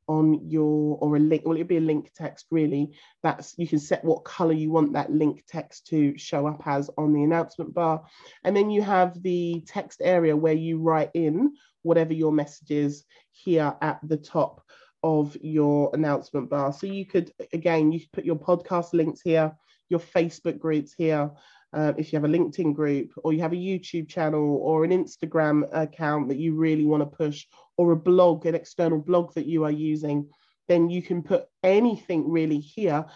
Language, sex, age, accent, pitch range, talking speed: English, male, 30-49, British, 150-180 Hz, 195 wpm